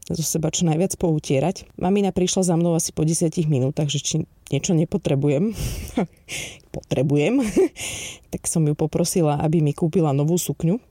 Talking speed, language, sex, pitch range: 150 wpm, Slovak, female, 150-180 Hz